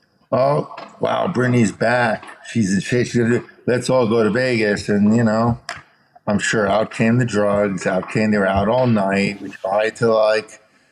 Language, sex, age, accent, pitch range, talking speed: English, male, 50-69, American, 110-145 Hz, 185 wpm